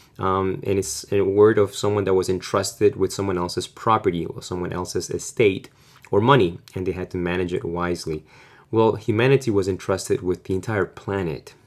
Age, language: 20-39, English